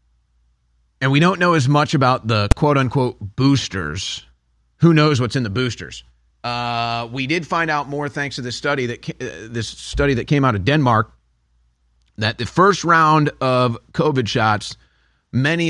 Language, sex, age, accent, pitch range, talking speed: English, male, 30-49, American, 105-145 Hz, 155 wpm